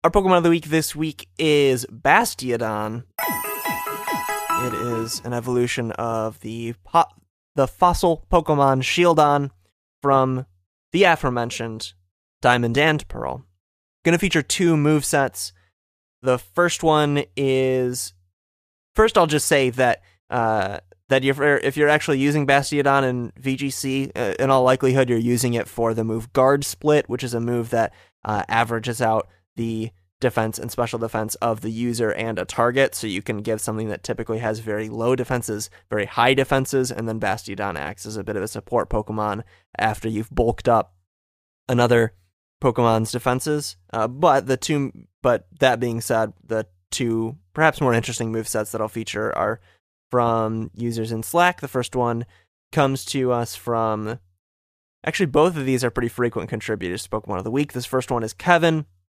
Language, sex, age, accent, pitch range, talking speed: English, male, 20-39, American, 110-135 Hz, 165 wpm